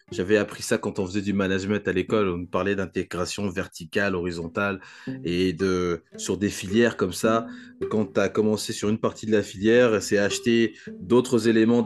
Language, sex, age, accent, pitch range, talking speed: French, male, 20-39, French, 100-135 Hz, 180 wpm